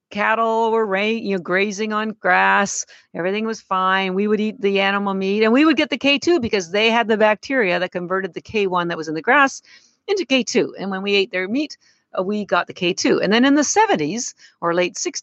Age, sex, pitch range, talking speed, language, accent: 50-69, female, 190-250 Hz, 210 wpm, English, American